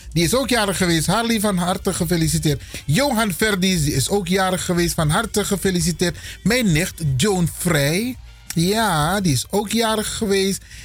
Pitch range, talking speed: 150-215 Hz, 160 wpm